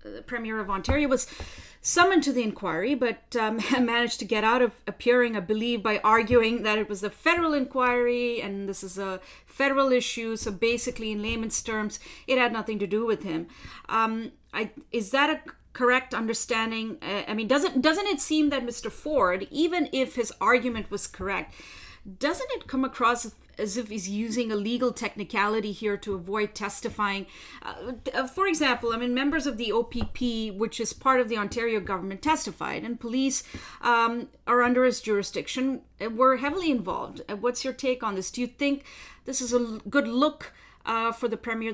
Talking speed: 180 wpm